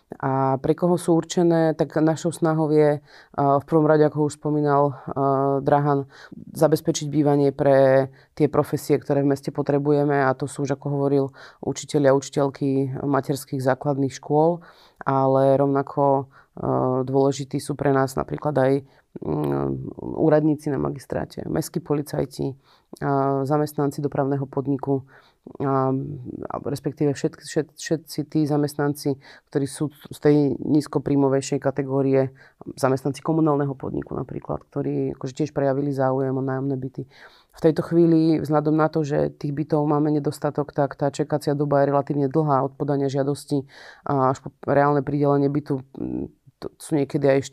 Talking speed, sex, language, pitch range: 140 wpm, female, Slovak, 135-150 Hz